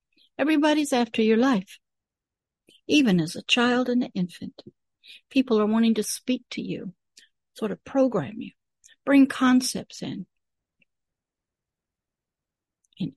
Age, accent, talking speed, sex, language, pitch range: 60-79, American, 120 wpm, female, English, 200-265 Hz